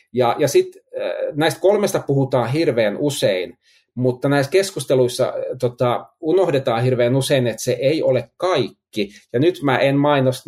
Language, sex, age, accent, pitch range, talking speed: Finnish, male, 30-49, native, 115-155 Hz, 145 wpm